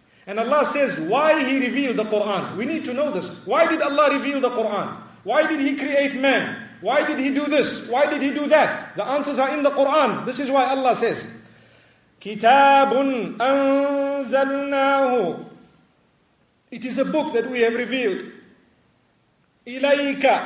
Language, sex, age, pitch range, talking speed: English, male, 50-69, 235-280 Hz, 160 wpm